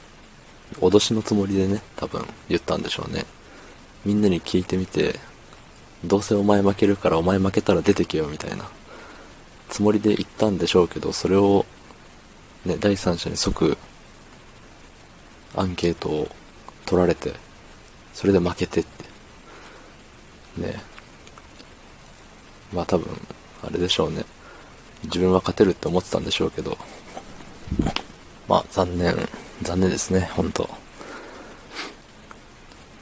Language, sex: Japanese, male